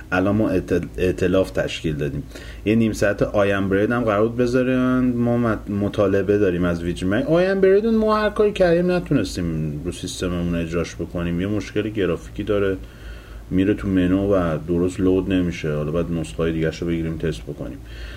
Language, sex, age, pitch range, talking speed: Persian, male, 30-49, 90-115 Hz, 160 wpm